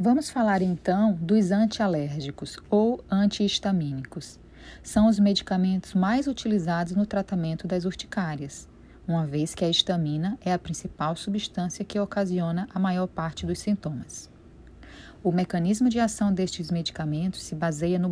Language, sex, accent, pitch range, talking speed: Portuguese, female, Brazilian, 165-210 Hz, 135 wpm